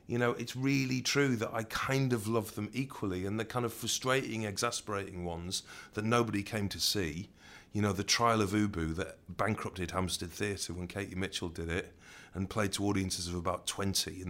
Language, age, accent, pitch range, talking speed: English, 40-59, British, 95-115 Hz, 195 wpm